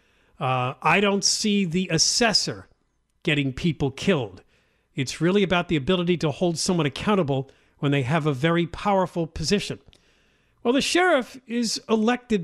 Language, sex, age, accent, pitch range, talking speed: English, male, 50-69, American, 140-205 Hz, 145 wpm